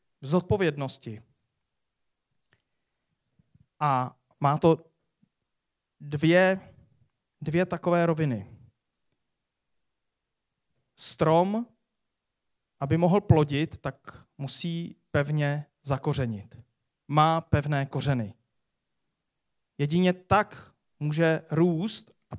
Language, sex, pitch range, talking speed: Czech, male, 140-165 Hz, 65 wpm